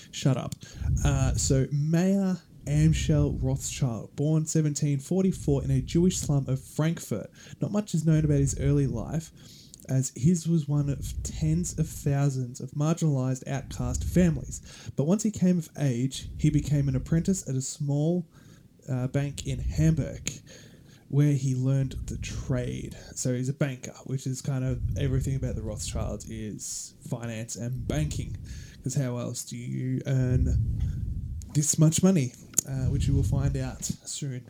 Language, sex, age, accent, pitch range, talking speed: English, male, 20-39, Australian, 125-155 Hz, 155 wpm